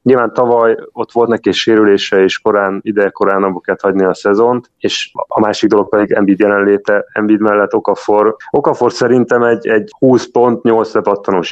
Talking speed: 145 wpm